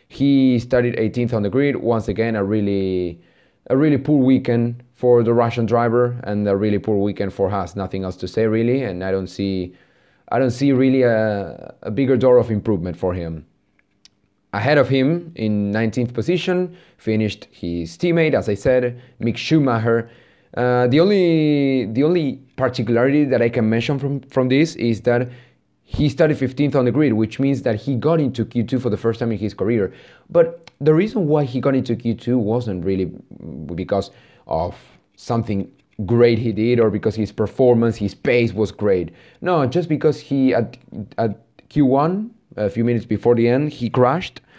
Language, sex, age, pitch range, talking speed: English, male, 30-49, 105-130 Hz, 180 wpm